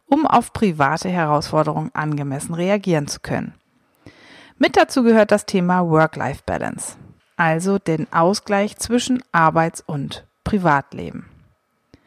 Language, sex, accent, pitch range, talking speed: German, female, German, 160-215 Hz, 105 wpm